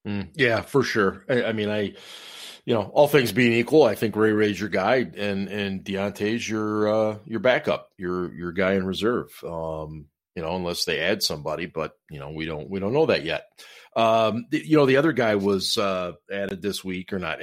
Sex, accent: male, American